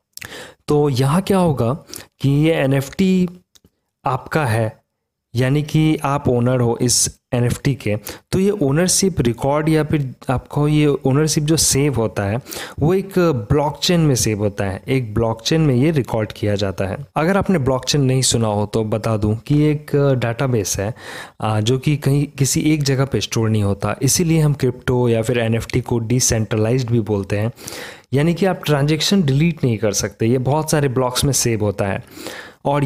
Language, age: English, 20-39